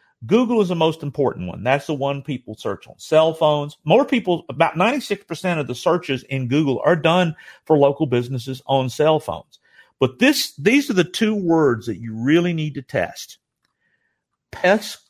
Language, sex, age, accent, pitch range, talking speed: English, male, 50-69, American, 130-175 Hz, 180 wpm